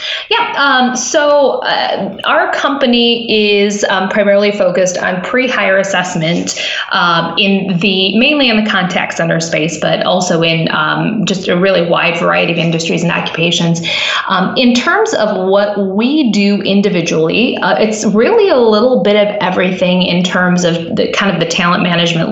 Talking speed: 160 wpm